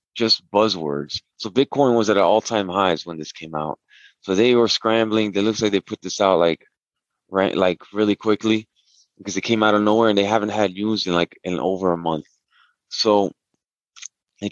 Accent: American